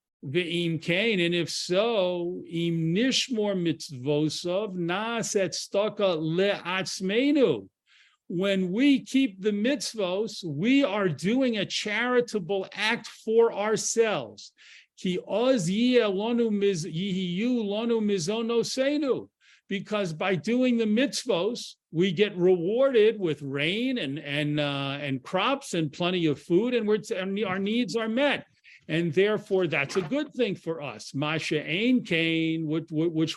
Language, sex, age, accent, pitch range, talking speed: English, male, 50-69, American, 170-230 Hz, 100 wpm